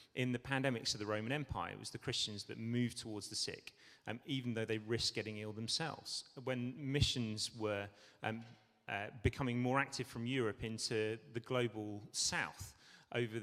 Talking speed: 175 wpm